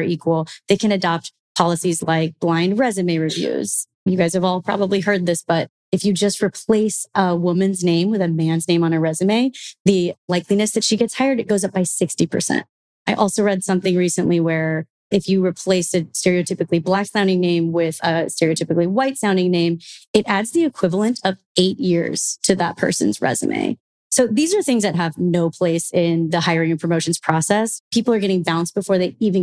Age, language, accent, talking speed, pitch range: 20-39, English, American, 190 wpm, 170-200 Hz